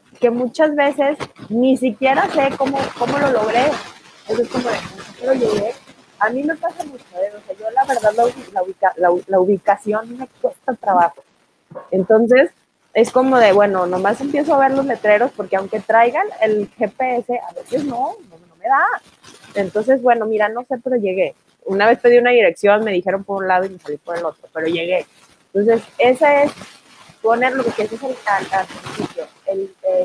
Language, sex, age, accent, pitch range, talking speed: Spanish, female, 20-39, Mexican, 195-265 Hz, 190 wpm